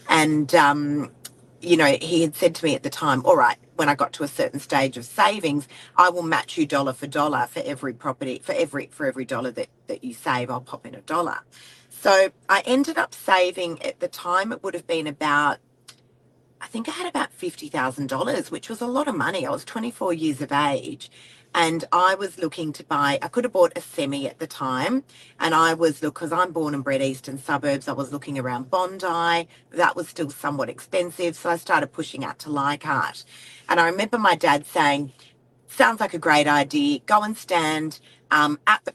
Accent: Australian